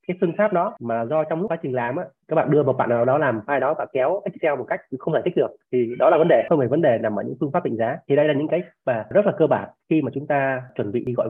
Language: Vietnamese